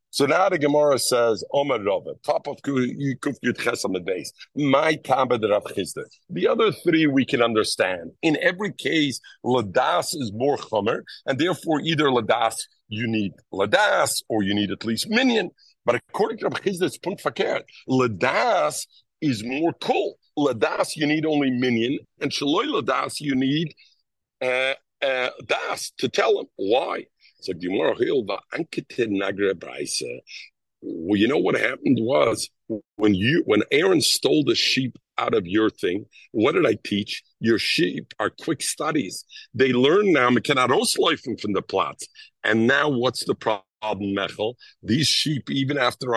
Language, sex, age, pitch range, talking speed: English, male, 50-69, 110-155 Hz, 130 wpm